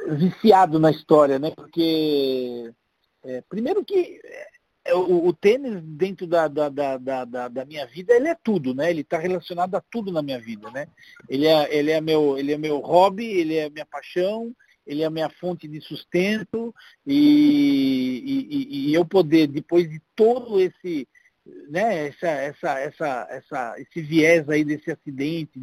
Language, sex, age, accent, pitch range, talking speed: Portuguese, male, 50-69, Brazilian, 140-180 Hz, 170 wpm